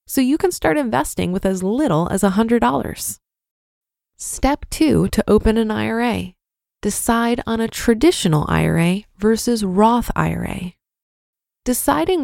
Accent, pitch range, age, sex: American, 195-245 Hz, 20-39, female